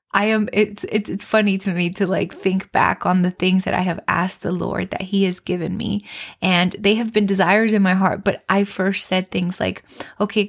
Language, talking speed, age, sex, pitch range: English, 235 wpm, 20-39, female, 180-215 Hz